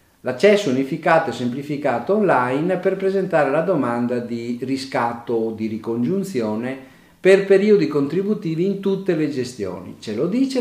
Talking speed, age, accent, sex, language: 135 wpm, 50-69, native, male, Italian